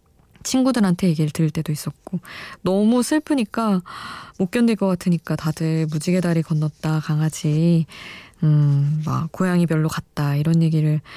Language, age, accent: Korean, 20-39, native